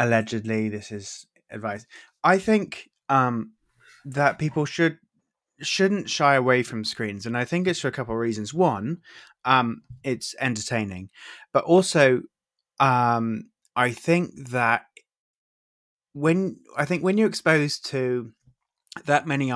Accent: British